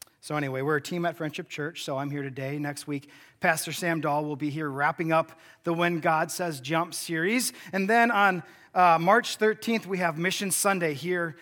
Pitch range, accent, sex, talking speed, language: 135-185 Hz, American, male, 205 wpm, English